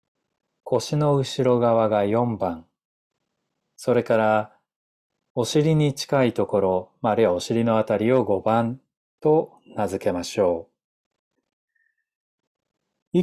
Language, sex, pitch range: Japanese, male, 110-140 Hz